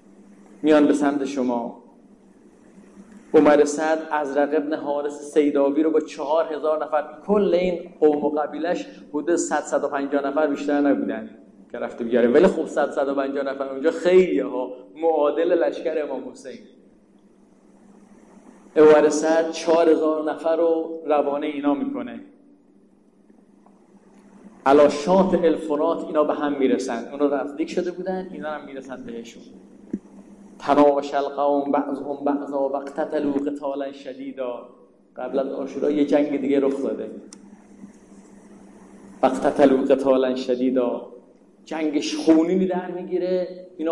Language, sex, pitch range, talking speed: Persian, male, 135-160 Hz, 125 wpm